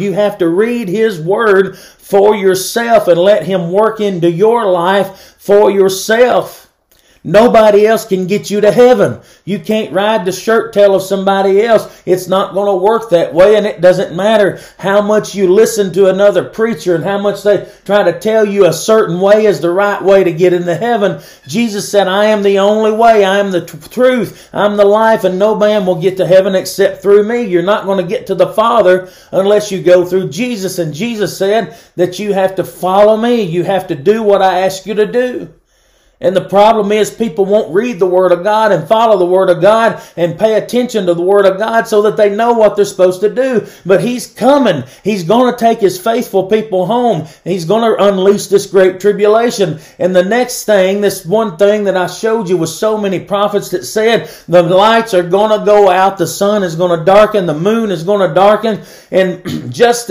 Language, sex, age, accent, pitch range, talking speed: English, male, 40-59, American, 185-215 Hz, 210 wpm